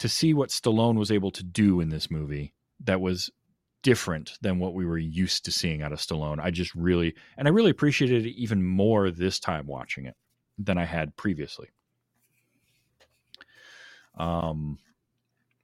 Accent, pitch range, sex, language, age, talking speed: American, 90-125 Hz, male, English, 30-49, 165 wpm